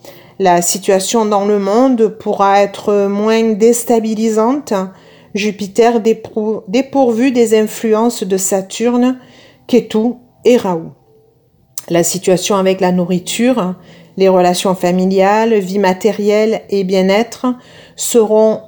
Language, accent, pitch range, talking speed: French, French, 185-235 Hz, 100 wpm